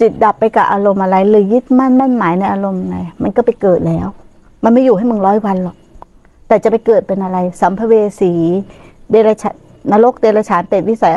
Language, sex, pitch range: Thai, female, 180-255 Hz